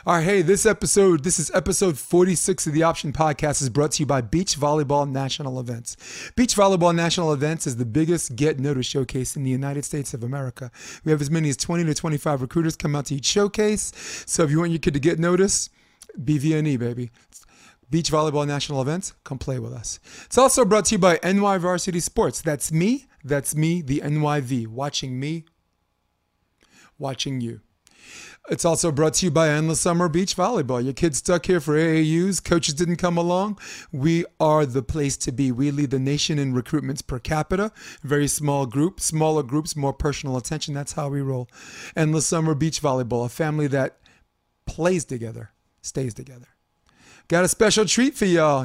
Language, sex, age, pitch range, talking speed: English, male, 30-49, 135-170 Hz, 190 wpm